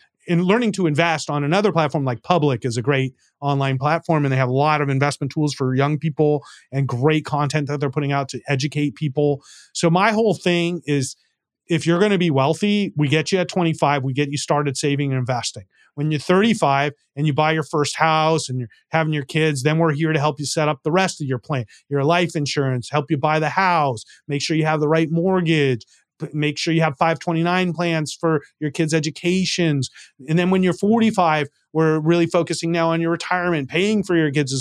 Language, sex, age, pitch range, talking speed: English, male, 30-49, 145-185 Hz, 220 wpm